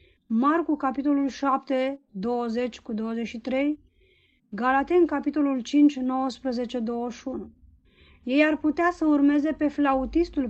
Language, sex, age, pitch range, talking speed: Romanian, female, 20-39, 245-300 Hz, 85 wpm